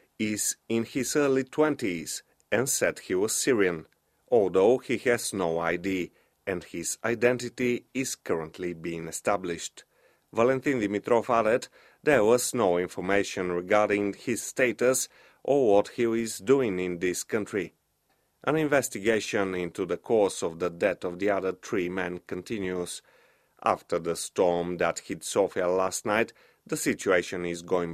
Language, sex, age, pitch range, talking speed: English, male, 30-49, 90-115 Hz, 140 wpm